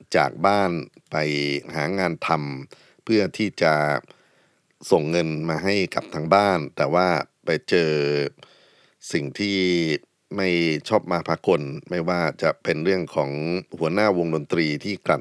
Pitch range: 75-90 Hz